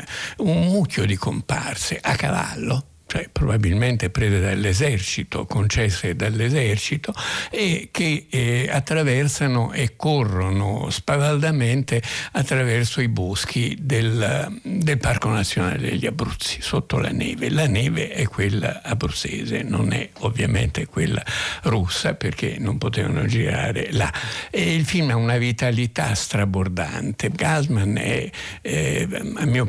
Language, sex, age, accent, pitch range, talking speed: Italian, male, 60-79, native, 110-145 Hz, 115 wpm